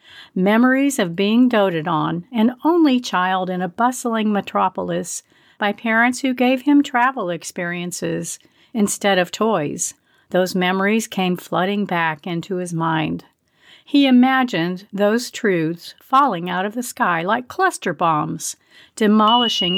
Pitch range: 180-245 Hz